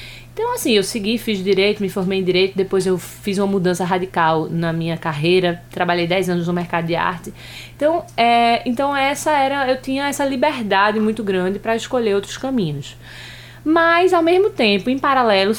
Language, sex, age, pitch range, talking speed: Portuguese, female, 20-39, 180-245 Hz, 180 wpm